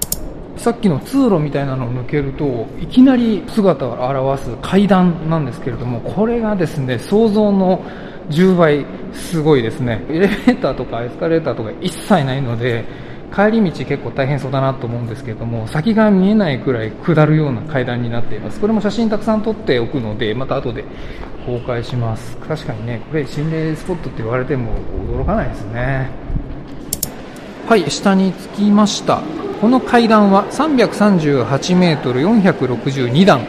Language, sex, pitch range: Japanese, male, 130-215 Hz